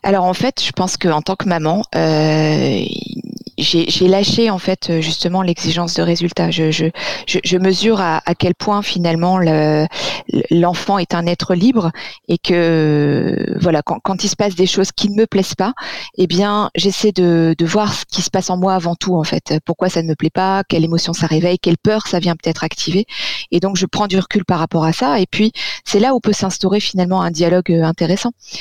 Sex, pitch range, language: female, 170-205 Hz, French